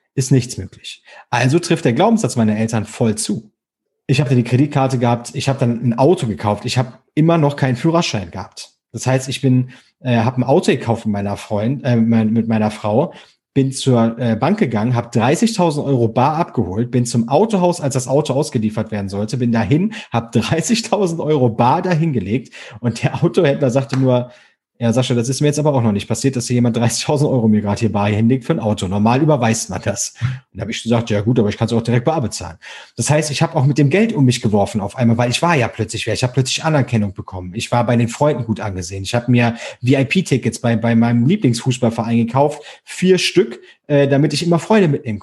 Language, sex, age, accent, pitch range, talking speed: German, male, 40-59, German, 115-145 Hz, 225 wpm